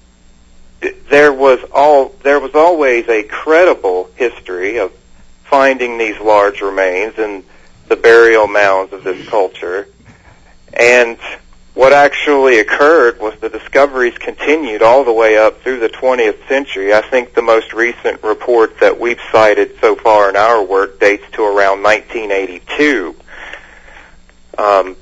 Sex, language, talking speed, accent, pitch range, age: male, English, 130 wpm, American, 100-140 Hz, 40-59